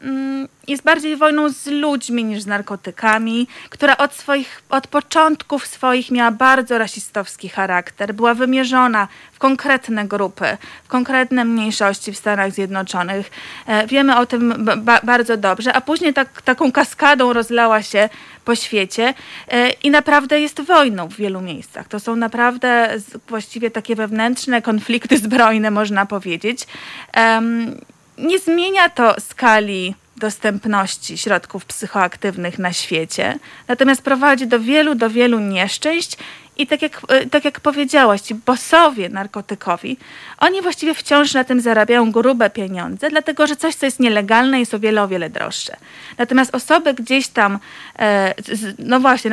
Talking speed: 135 wpm